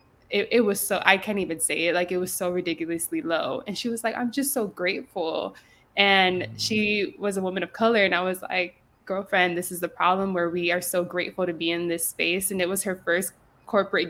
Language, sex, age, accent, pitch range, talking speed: English, female, 20-39, American, 170-185 Hz, 235 wpm